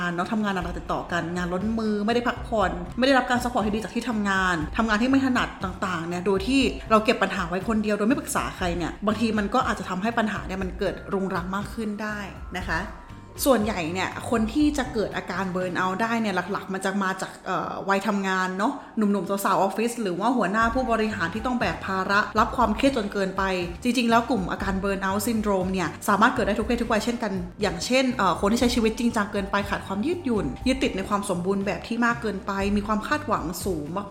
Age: 20-39